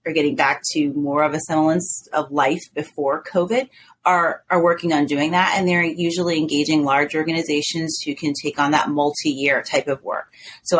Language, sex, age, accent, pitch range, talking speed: English, female, 30-49, American, 145-170 Hz, 190 wpm